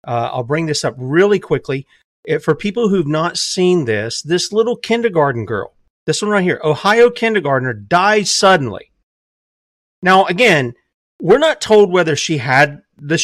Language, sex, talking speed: English, male, 155 wpm